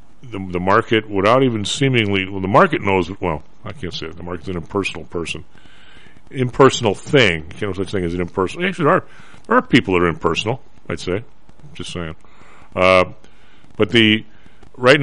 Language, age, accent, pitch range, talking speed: English, 50-69, American, 95-120 Hz, 190 wpm